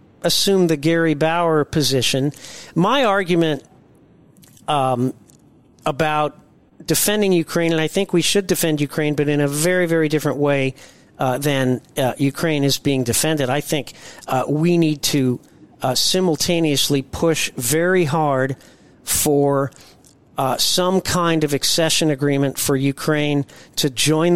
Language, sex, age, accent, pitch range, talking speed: English, male, 50-69, American, 135-165 Hz, 135 wpm